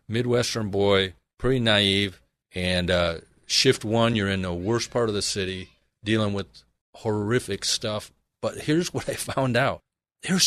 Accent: American